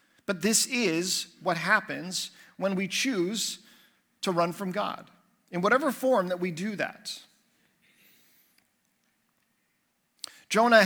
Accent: American